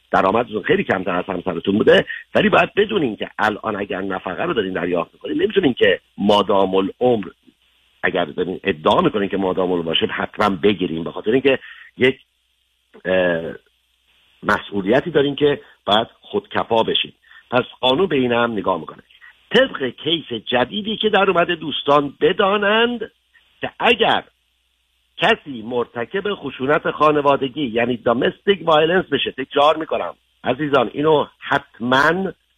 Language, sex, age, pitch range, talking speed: Persian, male, 50-69, 95-155 Hz, 130 wpm